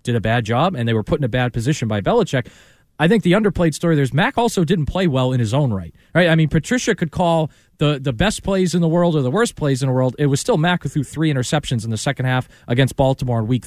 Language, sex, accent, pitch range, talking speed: English, male, American, 130-180 Hz, 285 wpm